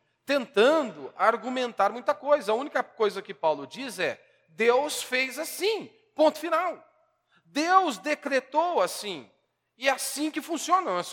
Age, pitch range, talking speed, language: 40-59, 175-275 Hz, 135 wpm, Portuguese